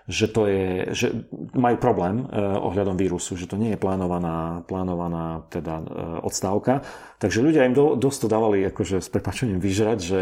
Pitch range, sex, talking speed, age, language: 95-125 Hz, male, 160 wpm, 40-59, Slovak